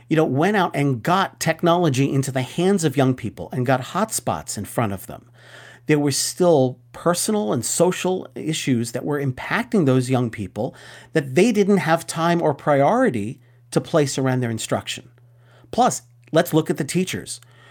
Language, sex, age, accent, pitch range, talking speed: English, male, 40-59, American, 125-160 Hz, 175 wpm